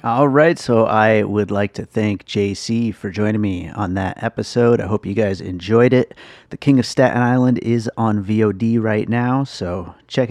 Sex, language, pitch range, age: male, English, 95-120 Hz, 30-49